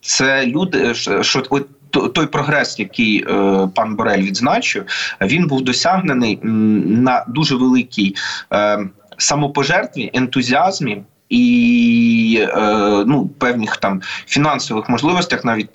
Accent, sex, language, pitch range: native, male, Ukrainian, 100-140 Hz